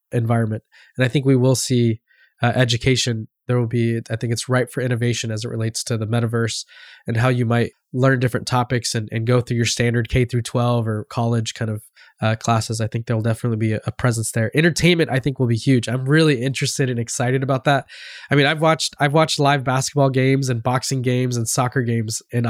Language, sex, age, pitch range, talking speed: English, male, 20-39, 115-130 Hz, 220 wpm